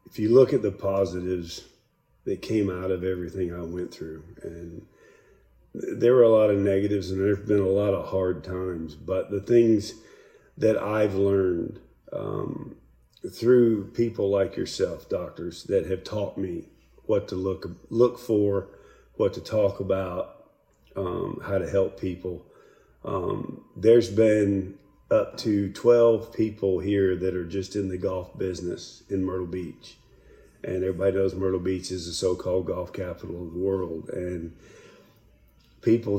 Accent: American